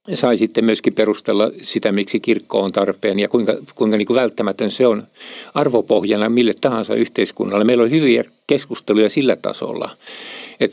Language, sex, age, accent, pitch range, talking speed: Finnish, male, 50-69, native, 110-130 Hz, 150 wpm